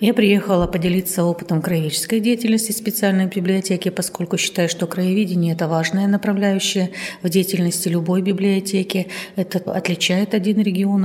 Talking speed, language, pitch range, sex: 125 wpm, Russian, 175-200 Hz, female